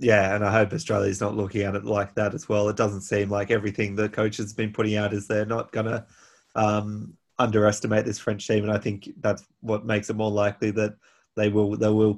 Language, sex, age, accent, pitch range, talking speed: English, male, 20-39, Australian, 105-115 Hz, 235 wpm